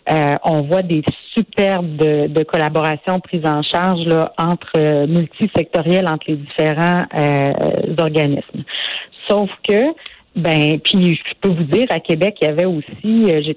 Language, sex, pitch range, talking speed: French, female, 155-190 Hz, 160 wpm